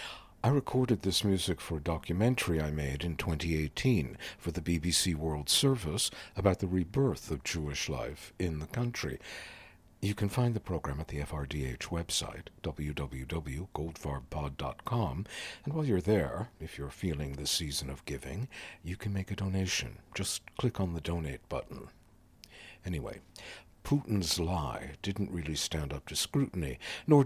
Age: 60-79